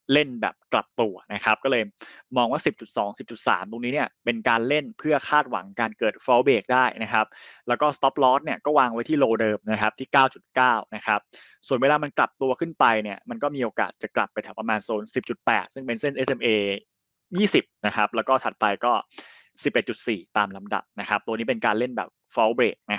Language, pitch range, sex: Thai, 115-150 Hz, male